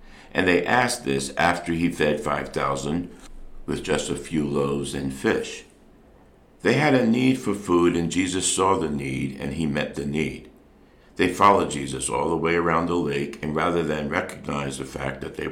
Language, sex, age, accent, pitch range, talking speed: English, male, 60-79, American, 65-80 Hz, 185 wpm